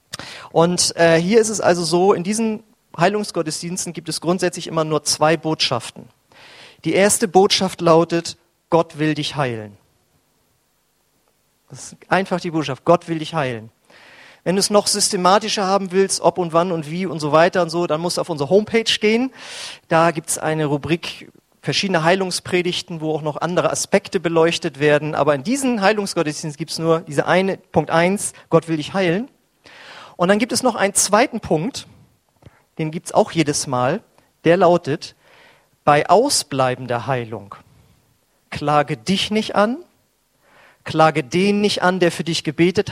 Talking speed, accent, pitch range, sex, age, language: 165 wpm, German, 150-190 Hz, male, 40-59, German